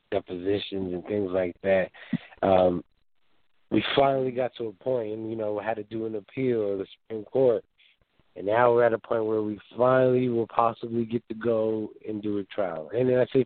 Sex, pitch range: male, 105-125 Hz